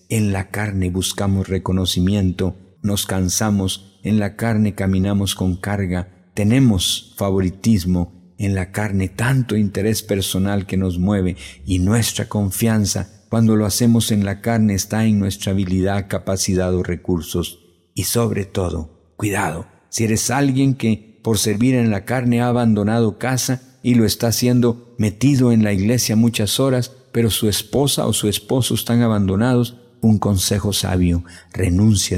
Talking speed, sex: 145 wpm, male